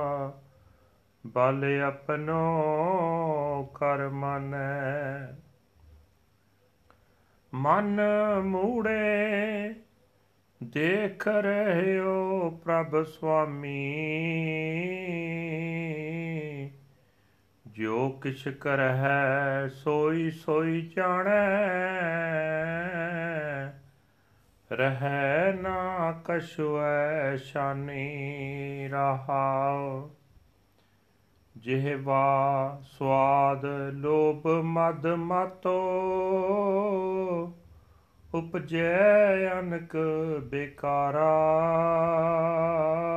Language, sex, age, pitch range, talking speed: Punjabi, male, 40-59, 135-165 Hz, 45 wpm